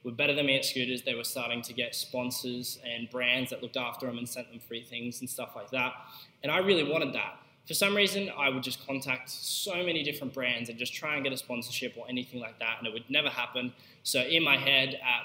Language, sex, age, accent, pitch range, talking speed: English, male, 10-29, Australian, 120-140 Hz, 250 wpm